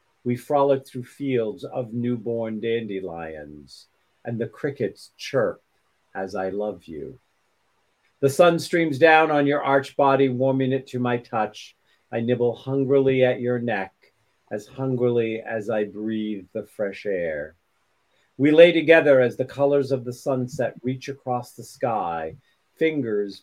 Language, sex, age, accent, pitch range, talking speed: English, male, 50-69, American, 105-135 Hz, 145 wpm